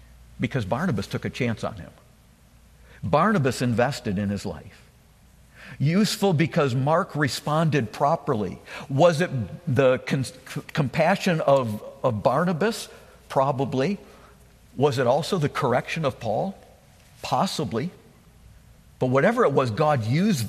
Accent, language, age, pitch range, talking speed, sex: American, English, 60-79, 115-165 Hz, 115 wpm, male